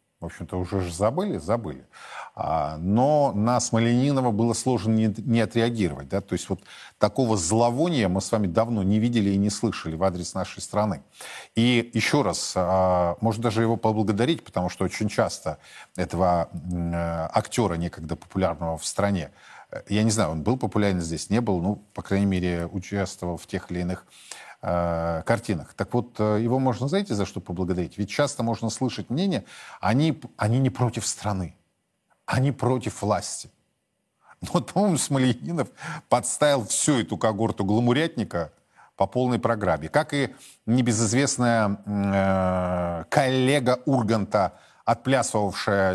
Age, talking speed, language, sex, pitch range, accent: 40-59, 140 wpm, Russian, male, 95-120 Hz, native